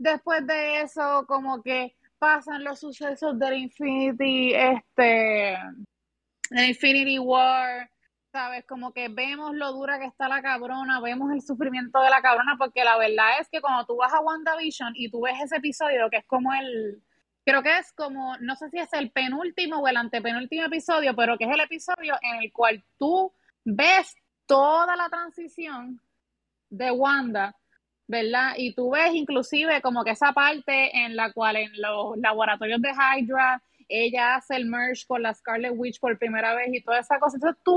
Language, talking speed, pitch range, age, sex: English, 175 wpm, 240-305 Hz, 20-39, female